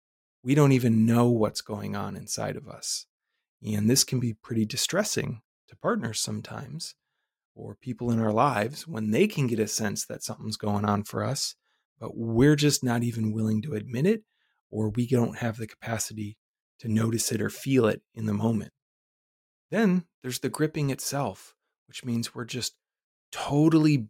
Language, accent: English, American